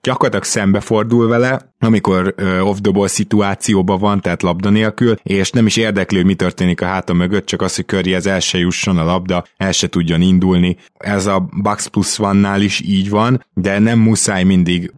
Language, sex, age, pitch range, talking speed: Hungarian, male, 20-39, 90-110 Hz, 175 wpm